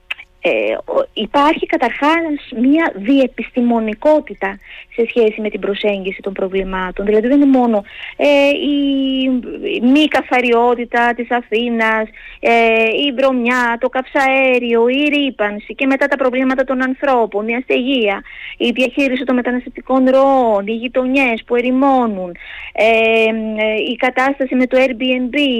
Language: Greek